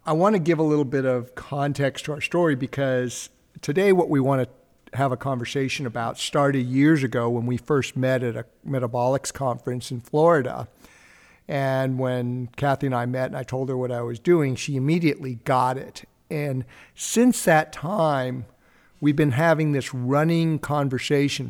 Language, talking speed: English, 175 wpm